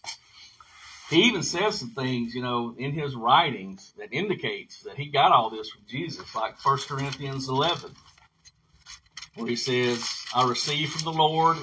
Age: 50-69